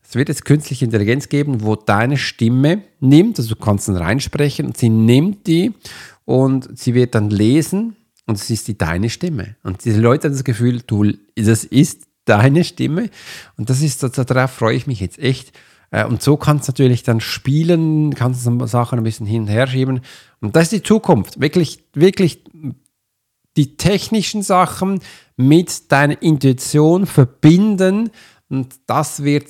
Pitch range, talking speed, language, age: 120-150 Hz, 170 wpm, German, 50-69